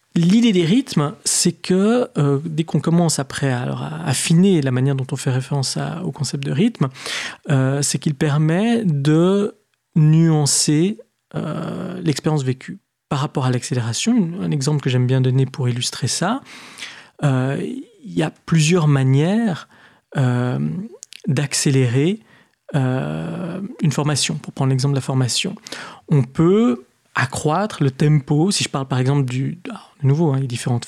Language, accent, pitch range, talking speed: French, French, 135-180 Hz, 155 wpm